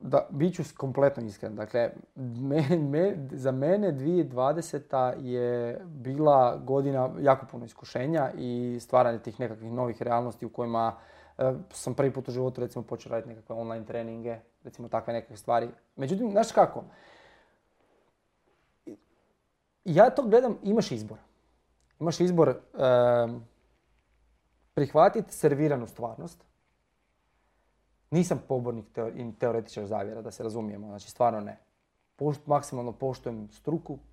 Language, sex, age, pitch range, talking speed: Croatian, male, 30-49, 115-145 Hz, 115 wpm